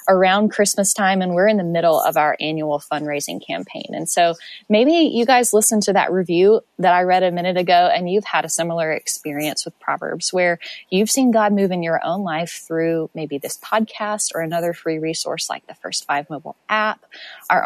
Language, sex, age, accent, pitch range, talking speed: English, female, 20-39, American, 160-195 Hz, 205 wpm